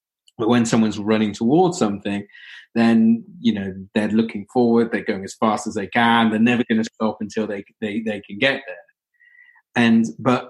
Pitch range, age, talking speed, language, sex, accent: 95-115 Hz, 30-49, 190 wpm, English, male, British